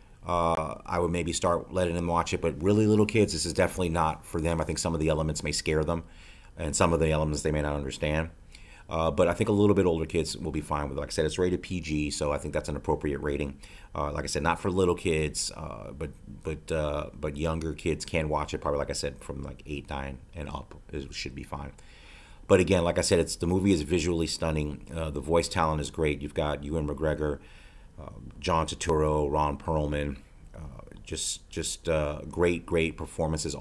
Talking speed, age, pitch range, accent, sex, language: 225 wpm, 30-49, 75-85 Hz, American, male, English